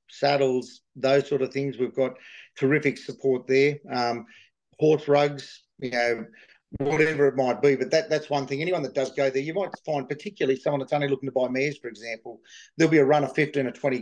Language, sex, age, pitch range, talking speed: English, male, 40-59, 130-145 Hz, 215 wpm